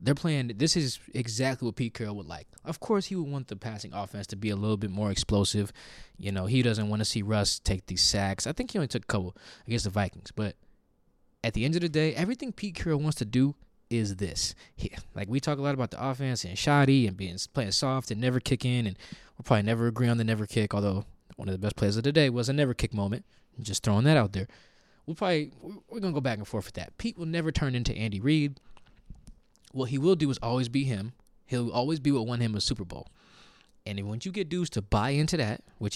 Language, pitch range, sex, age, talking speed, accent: English, 105-135 Hz, male, 20-39, 255 wpm, American